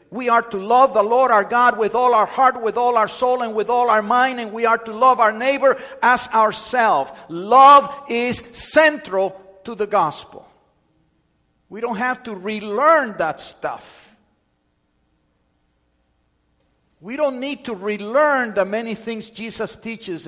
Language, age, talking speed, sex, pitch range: English, 50-69, 155 wpm, male, 180-235 Hz